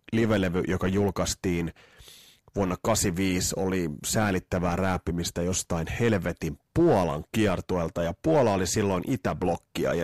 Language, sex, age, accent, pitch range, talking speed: Finnish, male, 30-49, native, 90-125 Hz, 110 wpm